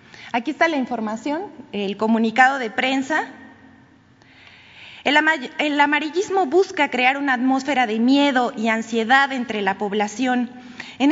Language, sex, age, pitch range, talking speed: Spanish, female, 20-39, 225-290 Hz, 120 wpm